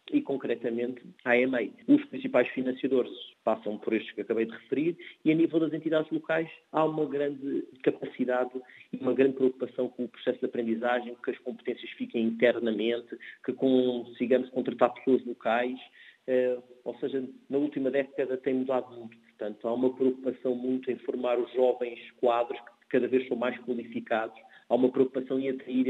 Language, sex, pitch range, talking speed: Portuguese, male, 115-130 Hz, 170 wpm